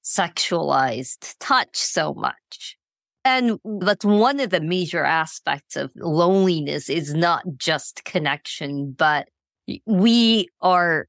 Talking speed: 110 wpm